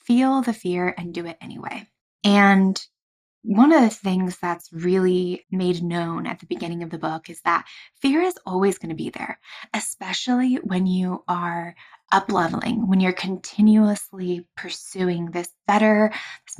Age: 20-39